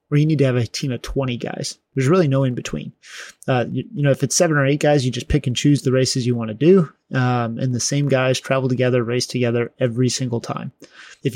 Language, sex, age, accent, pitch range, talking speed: English, male, 30-49, American, 125-145 Hz, 260 wpm